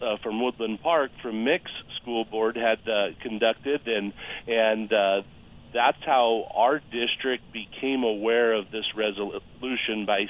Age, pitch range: 40-59, 105-120 Hz